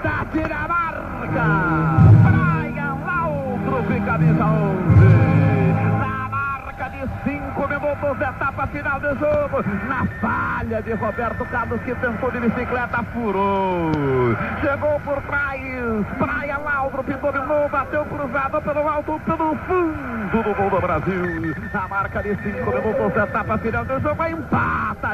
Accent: Brazilian